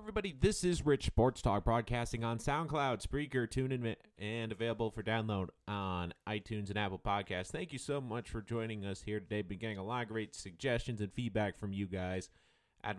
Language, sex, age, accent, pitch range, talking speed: English, male, 30-49, American, 100-140 Hz, 200 wpm